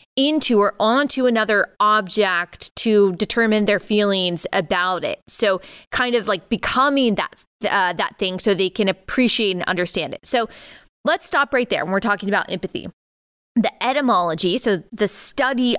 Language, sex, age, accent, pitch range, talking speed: English, female, 20-39, American, 195-245 Hz, 160 wpm